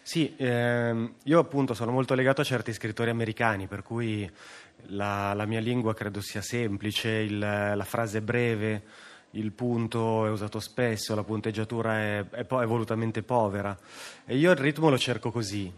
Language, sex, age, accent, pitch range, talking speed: Italian, male, 30-49, native, 105-120 Hz, 165 wpm